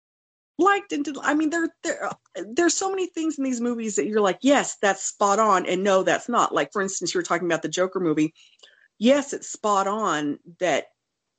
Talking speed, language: 210 wpm, English